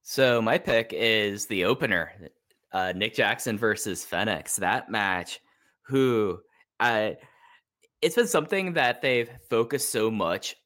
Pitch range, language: 95-120 Hz, English